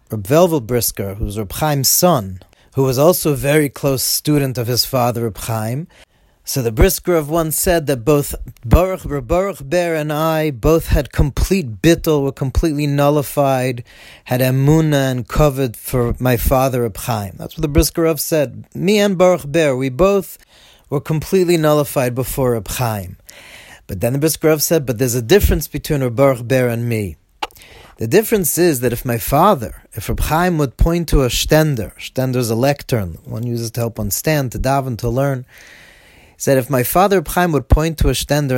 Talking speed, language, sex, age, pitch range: 175 wpm, English, male, 40-59, 125-160 Hz